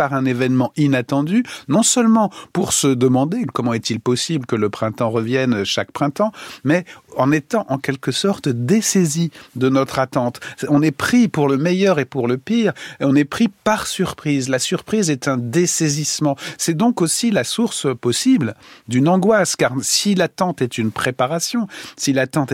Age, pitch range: 40-59, 120-170 Hz